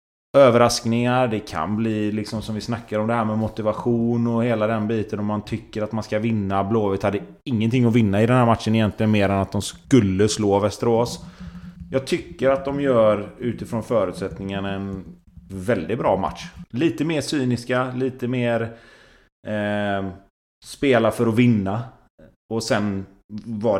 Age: 30-49